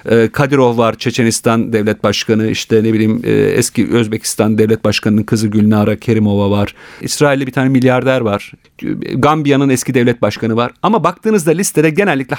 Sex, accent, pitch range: male, native, 120-165 Hz